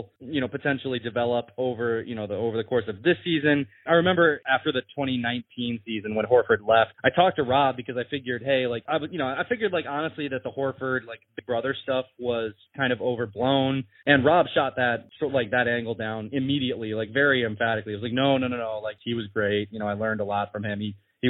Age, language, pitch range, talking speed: 20-39, English, 115-140 Hz, 240 wpm